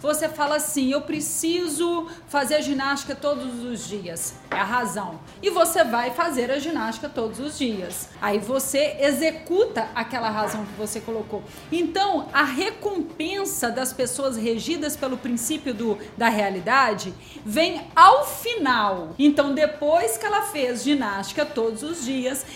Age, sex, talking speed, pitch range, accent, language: 40-59, female, 140 wpm, 230-325 Hz, Brazilian, Portuguese